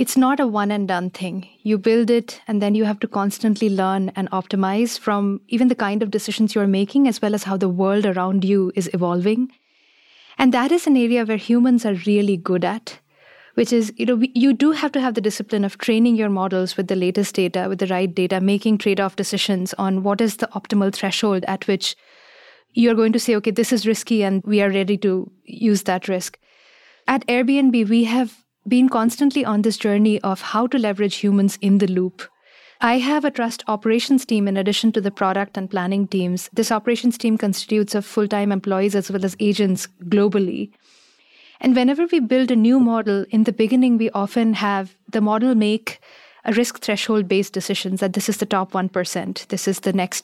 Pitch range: 195-235 Hz